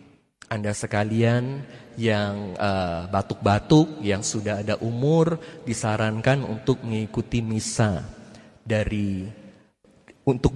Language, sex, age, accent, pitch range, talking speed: Indonesian, male, 30-49, native, 110-185 Hz, 85 wpm